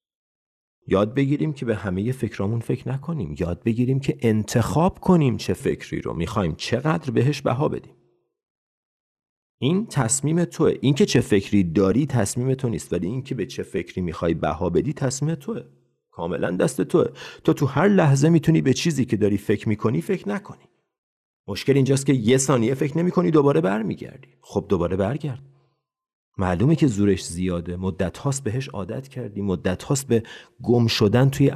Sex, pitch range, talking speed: male, 105-140 Hz, 165 wpm